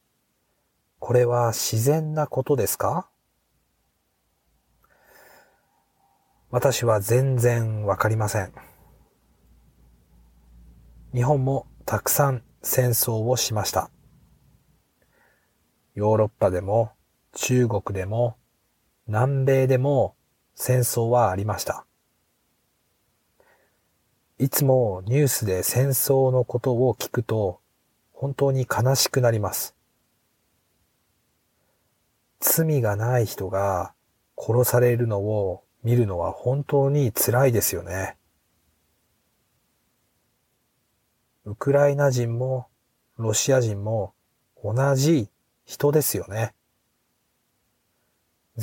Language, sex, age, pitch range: Japanese, male, 40-59, 100-135 Hz